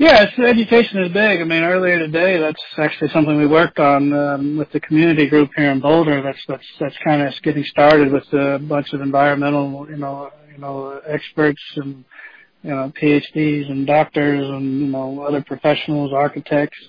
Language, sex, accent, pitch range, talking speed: English, male, American, 140-160 Hz, 180 wpm